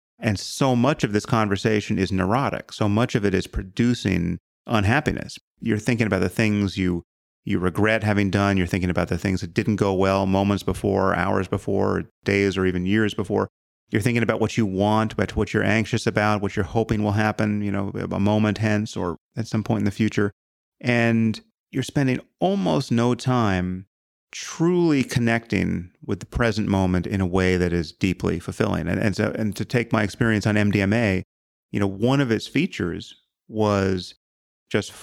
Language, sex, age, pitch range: English, male, 30-49, 95-115 Hz